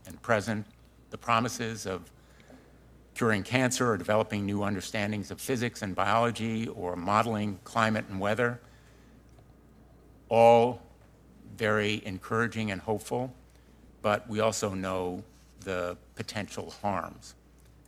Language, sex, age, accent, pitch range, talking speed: English, male, 60-79, American, 95-115 Hz, 105 wpm